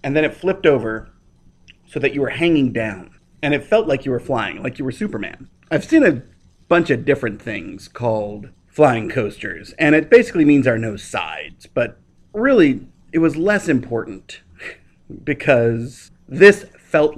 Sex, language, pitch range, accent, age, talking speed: male, English, 115-150 Hz, American, 30-49, 170 wpm